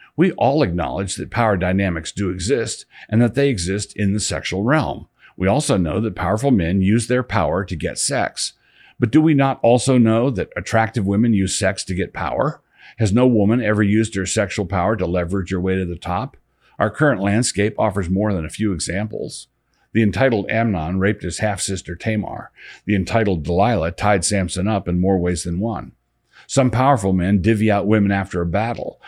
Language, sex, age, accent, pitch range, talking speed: English, male, 50-69, American, 90-110 Hz, 190 wpm